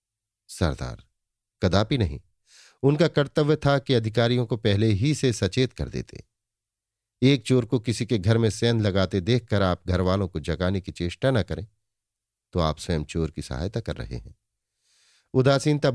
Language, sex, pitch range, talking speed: Hindi, male, 95-125 Hz, 165 wpm